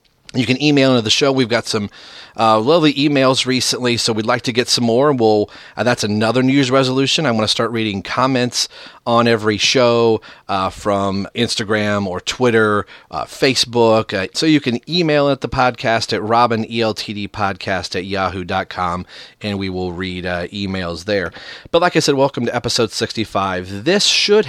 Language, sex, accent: English, male, American